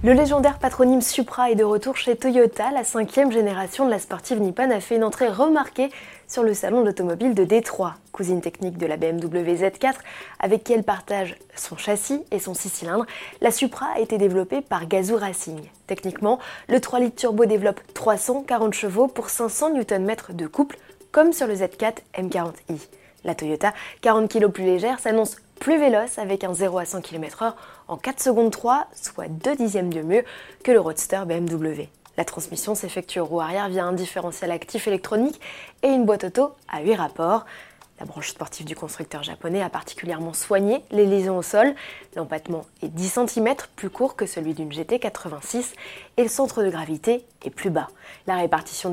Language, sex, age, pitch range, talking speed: French, female, 20-39, 185-245 Hz, 180 wpm